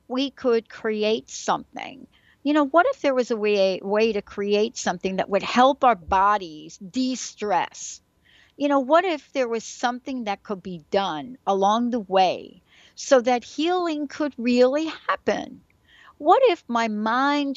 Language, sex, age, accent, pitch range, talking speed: English, female, 60-79, American, 195-250 Hz, 155 wpm